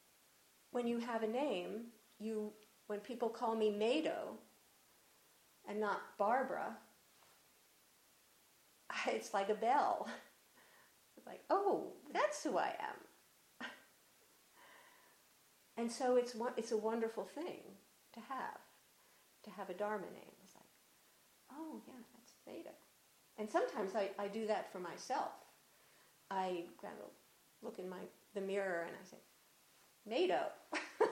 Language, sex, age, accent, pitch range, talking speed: English, female, 50-69, American, 215-310 Hz, 125 wpm